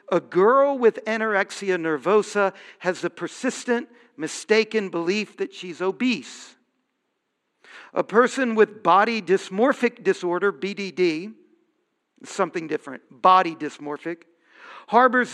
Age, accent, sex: 50-69, American, male